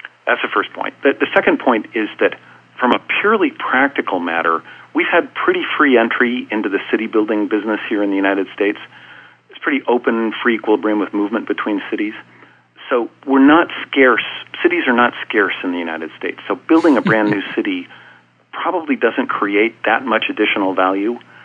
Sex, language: male, English